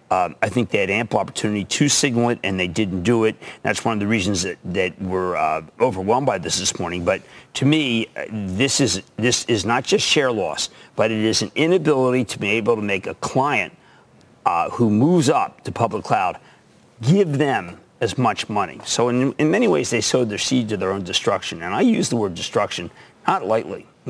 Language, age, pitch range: English, 50-69, 105-130 Hz